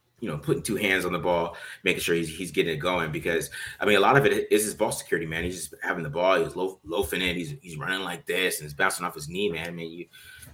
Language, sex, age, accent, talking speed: English, male, 30-49, American, 290 wpm